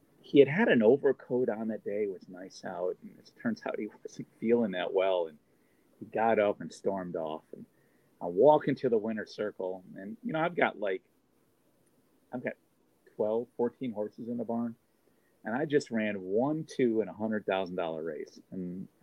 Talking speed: 185 wpm